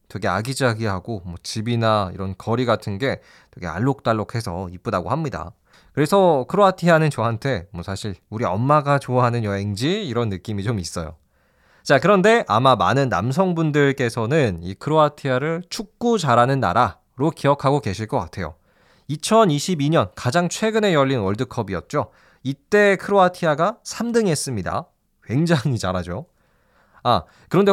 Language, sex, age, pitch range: Korean, male, 20-39, 110-180 Hz